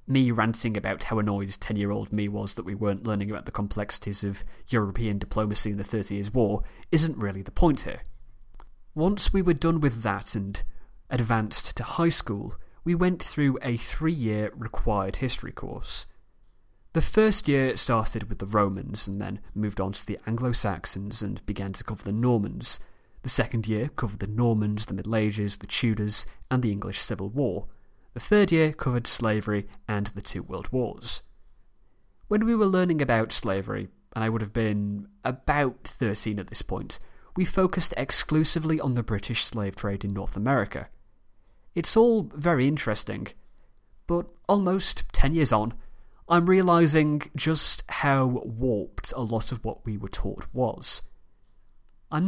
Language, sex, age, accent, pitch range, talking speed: English, male, 30-49, British, 100-140 Hz, 165 wpm